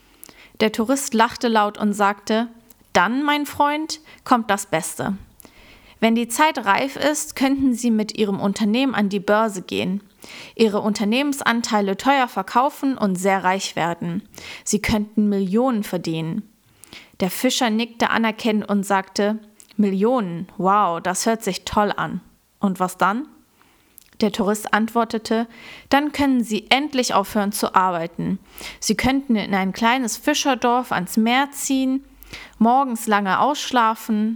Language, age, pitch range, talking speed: German, 30-49, 195-245 Hz, 135 wpm